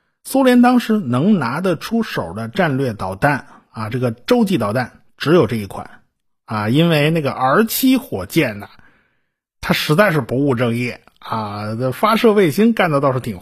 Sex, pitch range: male, 125-195 Hz